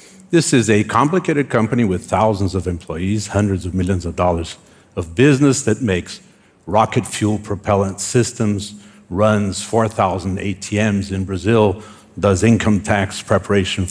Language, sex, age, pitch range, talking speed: Russian, male, 60-79, 95-135 Hz, 135 wpm